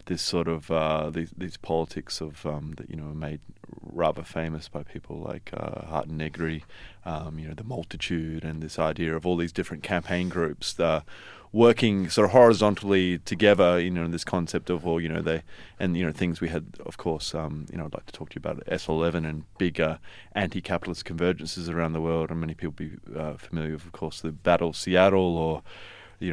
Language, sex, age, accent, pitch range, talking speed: English, male, 30-49, Australian, 80-100 Hz, 210 wpm